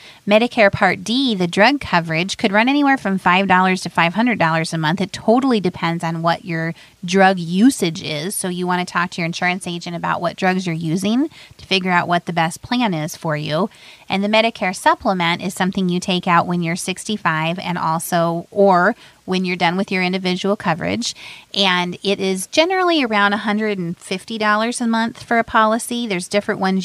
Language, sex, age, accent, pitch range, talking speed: English, female, 30-49, American, 175-215 Hz, 190 wpm